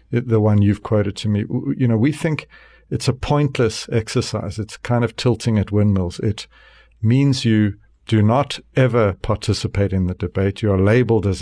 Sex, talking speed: male, 180 wpm